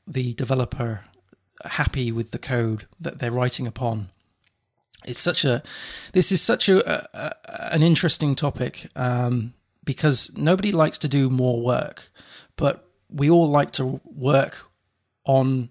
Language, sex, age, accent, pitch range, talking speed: English, male, 20-39, British, 120-150 Hz, 140 wpm